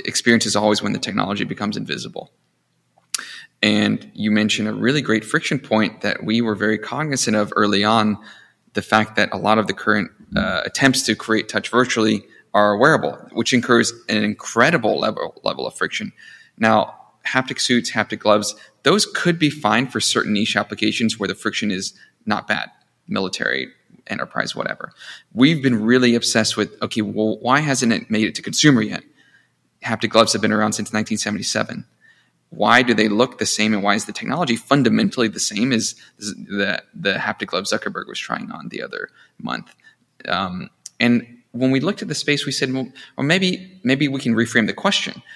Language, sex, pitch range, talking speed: English, male, 105-125 Hz, 180 wpm